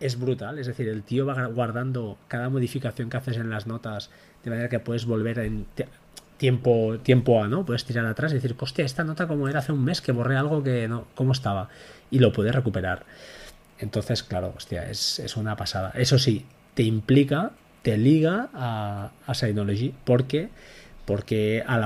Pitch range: 105-130 Hz